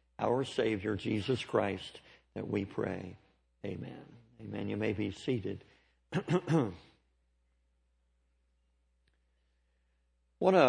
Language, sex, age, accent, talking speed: English, male, 60-79, American, 80 wpm